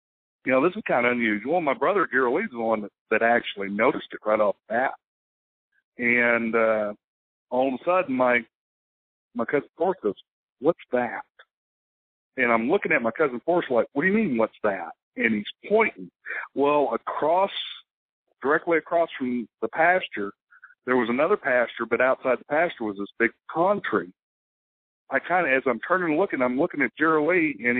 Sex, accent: male, American